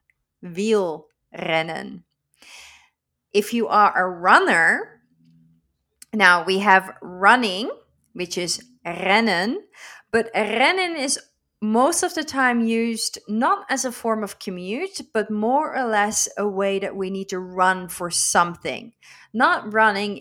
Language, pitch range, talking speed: Dutch, 180-230 Hz, 130 wpm